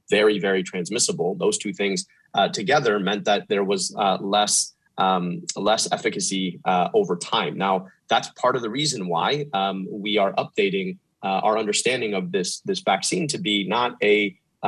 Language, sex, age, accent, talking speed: English, male, 30-49, American, 175 wpm